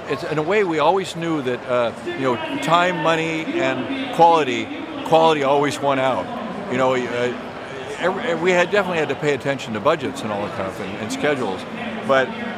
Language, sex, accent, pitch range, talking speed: English, male, American, 125-150 Hz, 190 wpm